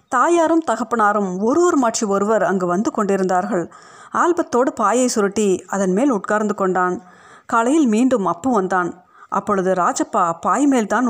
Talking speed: 120 wpm